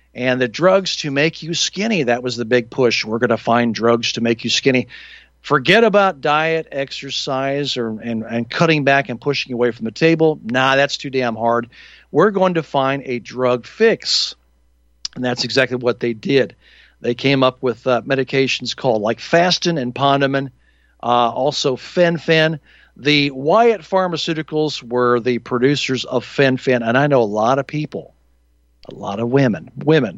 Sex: male